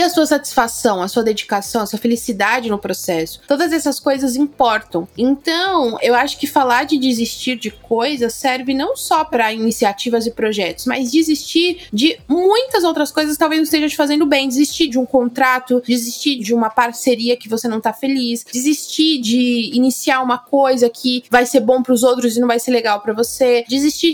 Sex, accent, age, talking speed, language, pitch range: female, Brazilian, 20-39, 190 wpm, Portuguese, 240-310 Hz